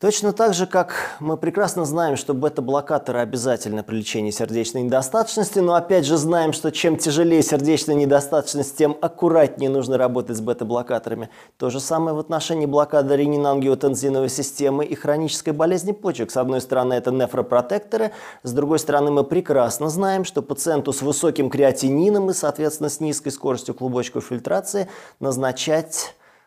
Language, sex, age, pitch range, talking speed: Russian, male, 20-39, 130-160 Hz, 150 wpm